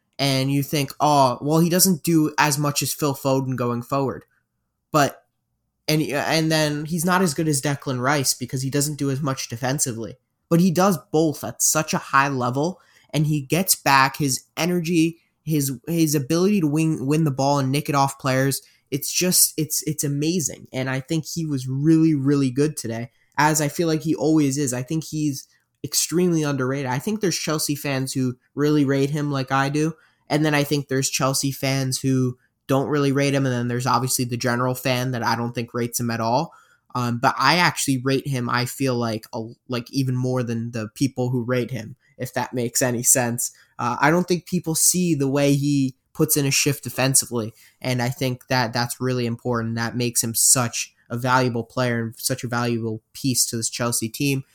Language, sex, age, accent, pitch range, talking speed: English, male, 20-39, American, 125-150 Hz, 205 wpm